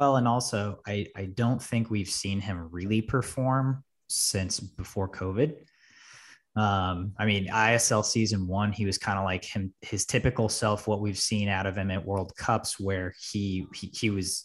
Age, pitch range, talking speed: 20-39, 95-110 Hz, 185 wpm